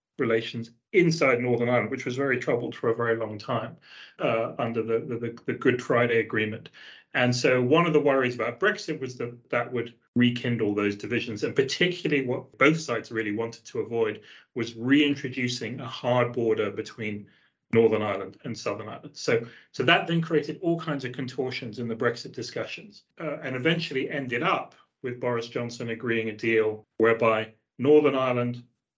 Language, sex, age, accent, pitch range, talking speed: English, male, 30-49, British, 115-145 Hz, 170 wpm